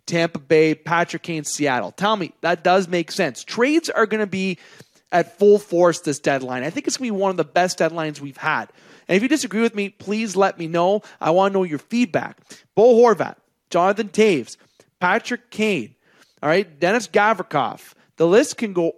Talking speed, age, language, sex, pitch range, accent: 200 wpm, 30-49, English, male, 150-195 Hz, American